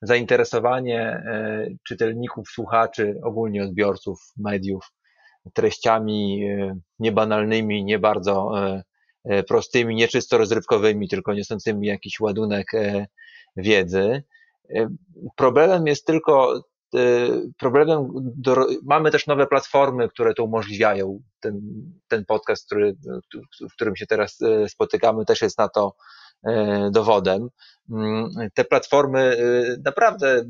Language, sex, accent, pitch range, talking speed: Polish, male, native, 110-145 Hz, 95 wpm